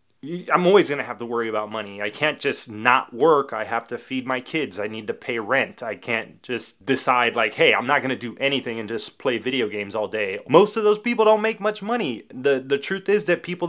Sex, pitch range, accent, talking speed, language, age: male, 120-150 Hz, American, 245 wpm, English, 20-39